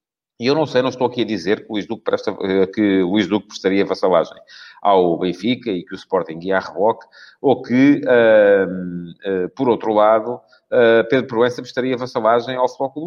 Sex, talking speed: male, 185 wpm